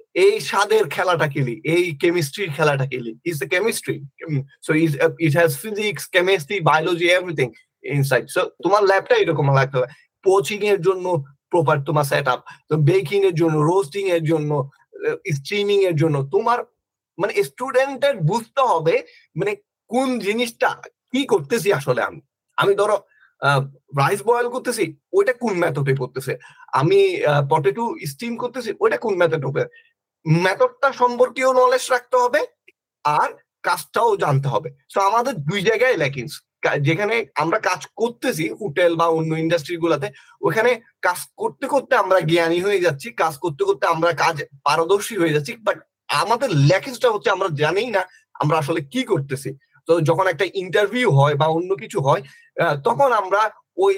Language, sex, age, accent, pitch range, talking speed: Bengali, male, 30-49, native, 160-250 Hz, 110 wpm